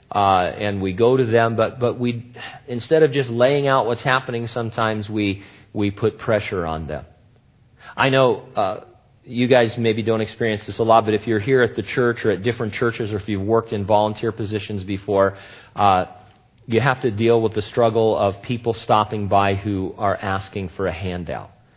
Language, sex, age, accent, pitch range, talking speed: English, male, 40-59, American, 105-125 Hz, 195 wpm